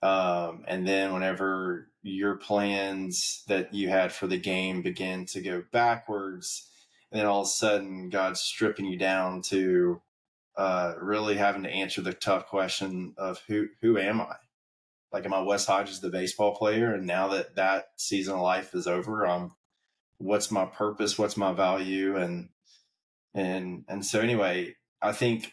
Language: English